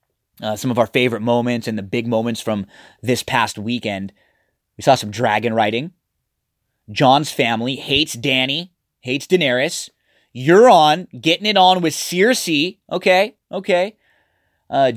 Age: 20-39